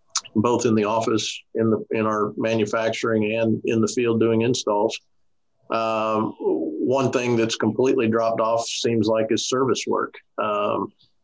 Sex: male